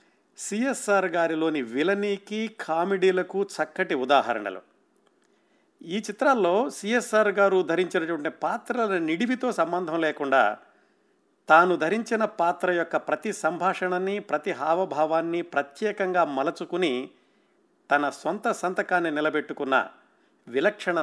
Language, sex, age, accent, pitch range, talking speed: Telugu, male, 50-69, native, 155-200 Hz, 85 wpm